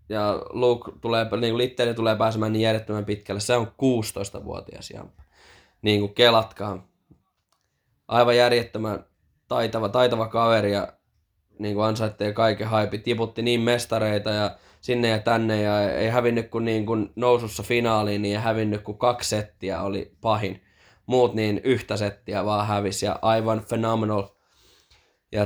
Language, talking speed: Finnish, 130 wpm